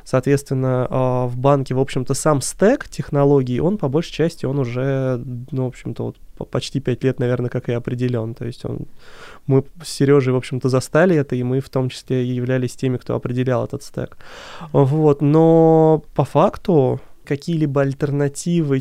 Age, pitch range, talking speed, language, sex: 20-39, 130-145 Hz, 170 wpm, Russian, male